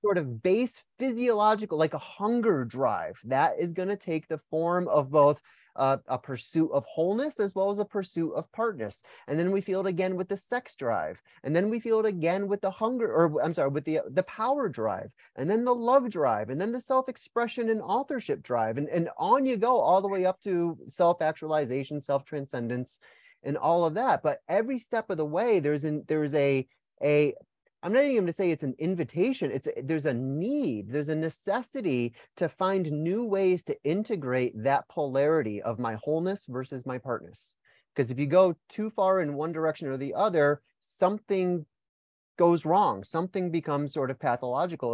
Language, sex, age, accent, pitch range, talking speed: English, male, 30-49, American, 145-205 Hz, 195 wpm